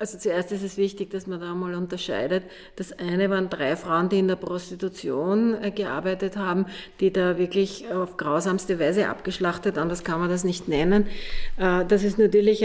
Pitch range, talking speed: 175-195 Hz, 190 wpm